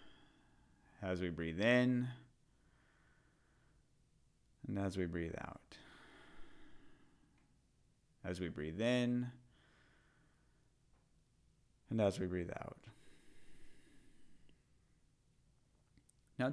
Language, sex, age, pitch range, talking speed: English, male, 30-49, 90-120 Hz, 70 wpm